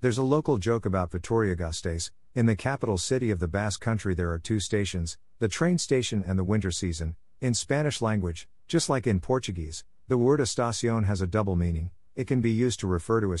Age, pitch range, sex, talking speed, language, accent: 50-69, 90-115 Hz, male, 215 wpm, English, American